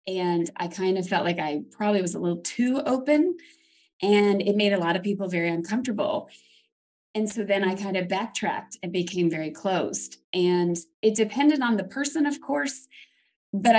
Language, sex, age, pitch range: English, female, 20-39, 175-215 Hz